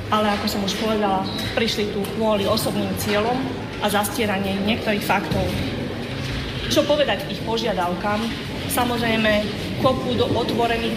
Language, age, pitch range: Slovak, 30-49, 205-235 Hz